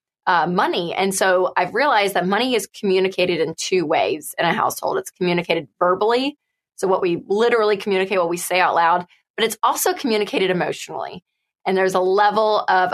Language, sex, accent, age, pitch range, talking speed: English, female, American, 20-39, 180-225 Hz, 180 wpm